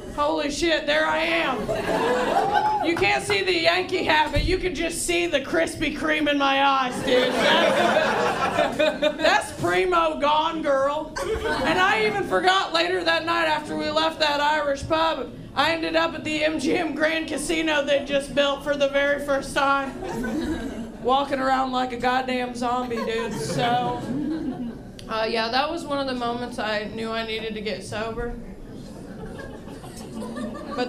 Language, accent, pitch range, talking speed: English, American, 270-330 Hz, 160 wpm